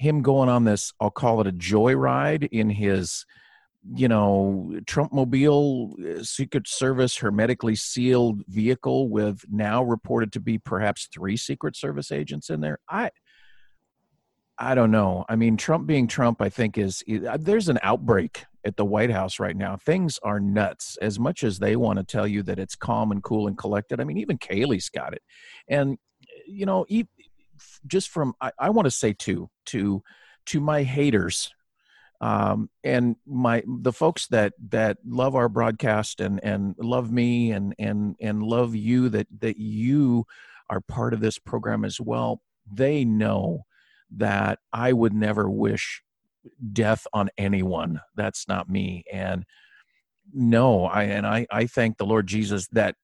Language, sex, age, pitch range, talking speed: English, male, 50-69, 105-125 Hz, 165 wpm